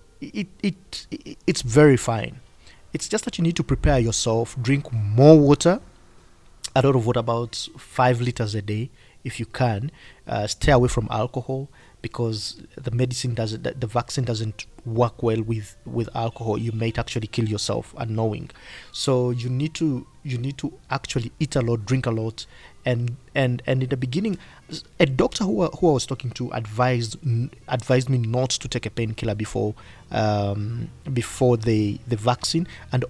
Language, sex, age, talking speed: English, male, 30-49, 170 wpm